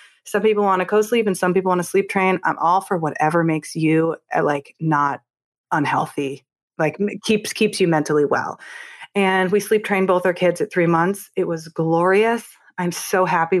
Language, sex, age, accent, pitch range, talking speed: English, female, 30-49, American, 165-205 Hz, 190 wpm